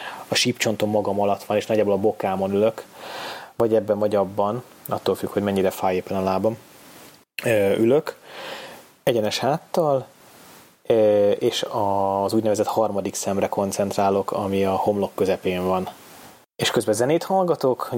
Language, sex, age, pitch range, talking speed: Hungarian, male, 20-39, 100-125 Hz, 135 wpm